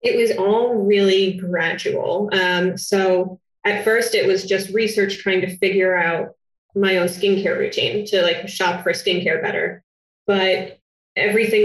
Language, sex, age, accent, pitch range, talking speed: English, female, 20-39, American, 180-205 Hz, 150 wpm